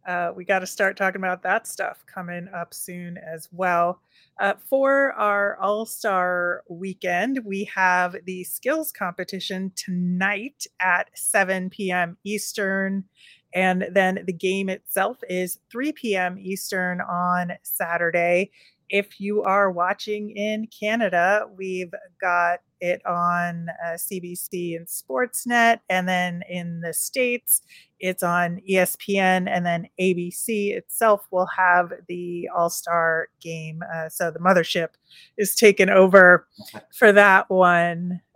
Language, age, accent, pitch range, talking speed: English, 30-49, American, 175-205 Hz, 130 wpm